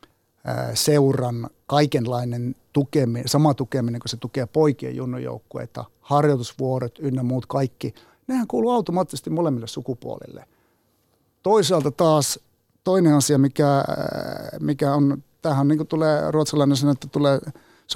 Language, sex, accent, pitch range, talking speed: Finnish, male, native, 125-165 Hz, 115 wpm